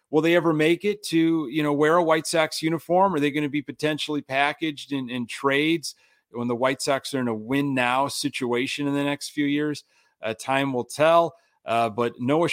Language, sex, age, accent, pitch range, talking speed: English, male, 40-59, American, 125-165 Hz, 210 wpm